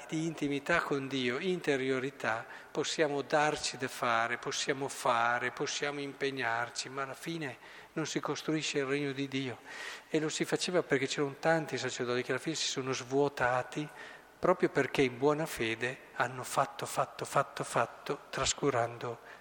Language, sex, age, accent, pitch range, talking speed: Italian, male, 50-69, native, 125-155 Hz, 150 wpm